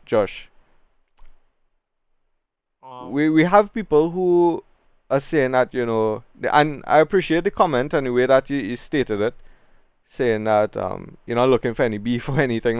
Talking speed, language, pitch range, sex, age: 170 wpm, English, 110-140 Hz, male, 20-39